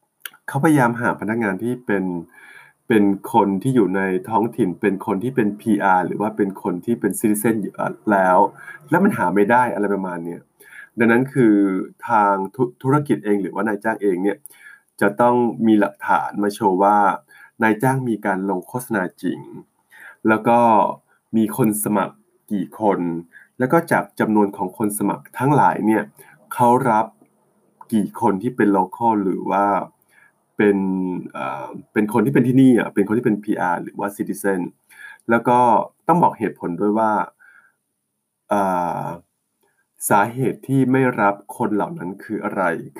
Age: 20-39